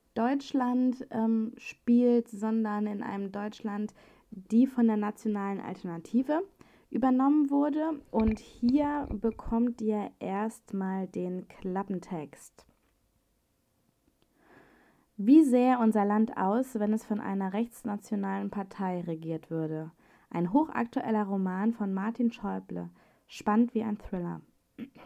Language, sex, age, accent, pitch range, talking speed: German, female, 20-39, German, 195-240 Hz, 105 wpm